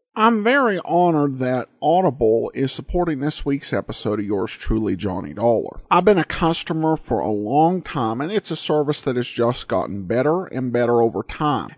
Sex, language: male, English